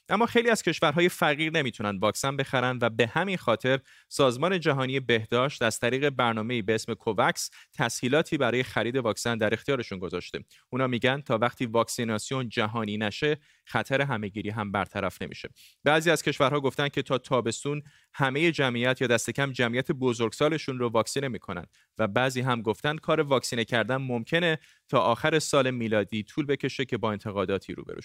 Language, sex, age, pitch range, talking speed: Persian, male, 30-49, 115-145 Hz, 165 wpm